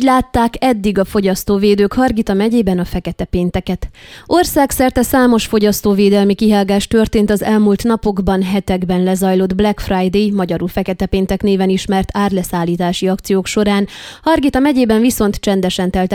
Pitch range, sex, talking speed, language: 190-225 Hz, female, 125 wpm, Hungarian